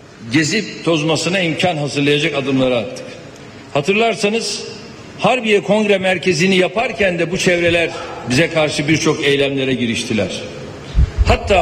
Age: 60-79